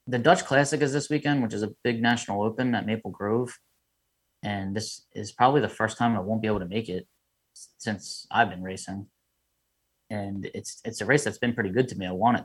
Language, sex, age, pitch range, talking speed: English, male, 20-39, 100-120 Hz, 225 wpm